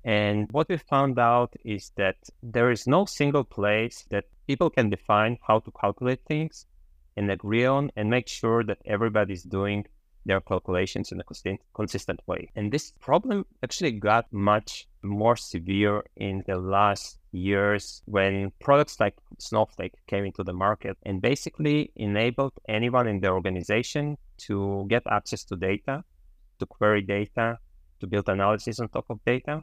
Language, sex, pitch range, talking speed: English, male, 100-120 Hz, 155 wpm